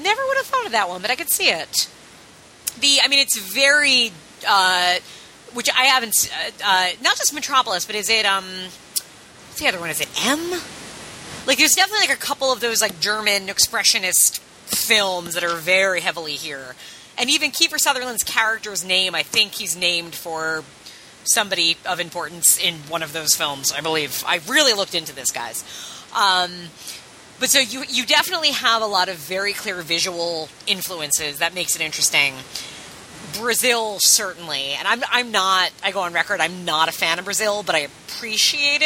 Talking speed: 180 wpm